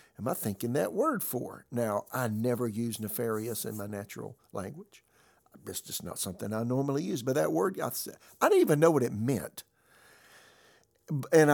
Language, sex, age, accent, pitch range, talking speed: English, male, 60-79, American, 115-150 Hz, 170 wpm